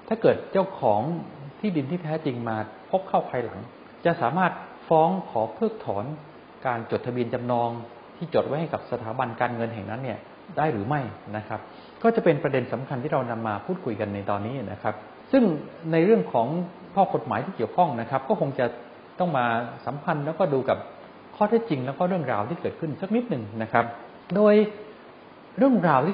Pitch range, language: 115-170 Hz, English